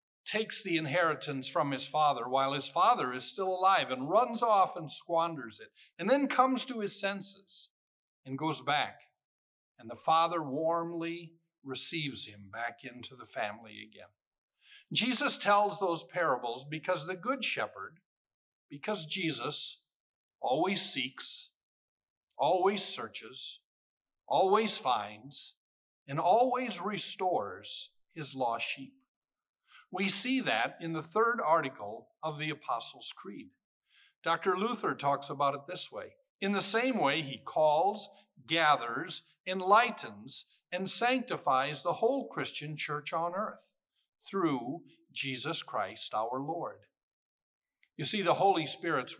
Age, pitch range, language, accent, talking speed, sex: 50-69, 140-210 Hz, English, American, 125 wpm, male